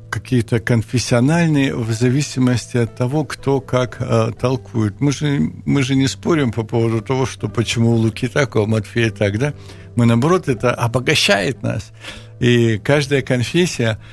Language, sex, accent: Ukrainian, male, native